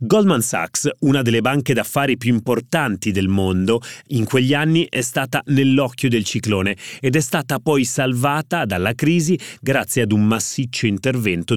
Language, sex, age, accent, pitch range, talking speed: Italian, male, 30-49, native, 105-135 Hz, 155 wpm